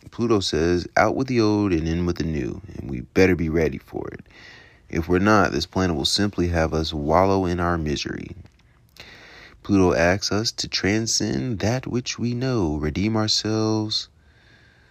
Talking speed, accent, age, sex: 170 wpm, American, 30-49, male